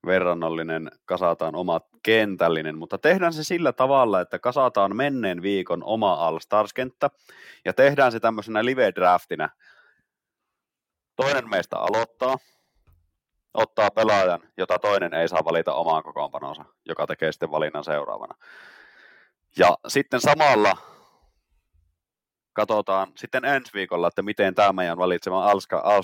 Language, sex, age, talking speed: Finnish, male, 30-49, 120 wpm